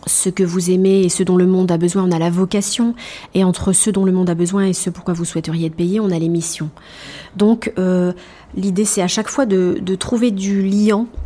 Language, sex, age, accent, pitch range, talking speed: French, female, 30-49, French, 180-215 Hz, 245 wpm